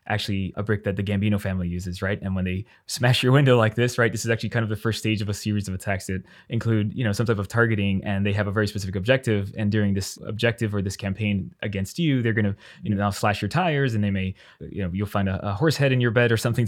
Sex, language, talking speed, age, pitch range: male, English, 290 wpm, 20-39, 95-110 Hz